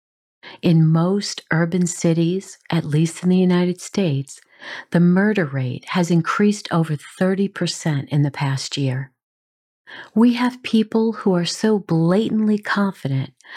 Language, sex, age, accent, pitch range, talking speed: English, female, 50-69, American, 145-195 Hz, 130 wpm